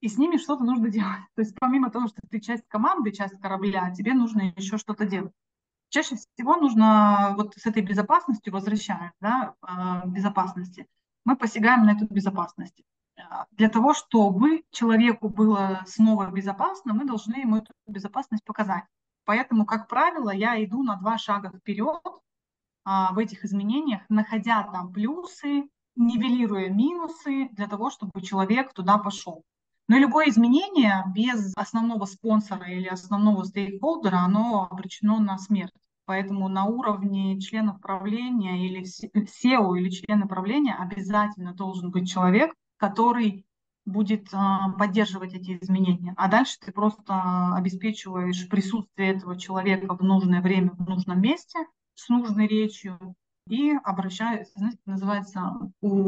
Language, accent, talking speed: Russian, native, 135 wpm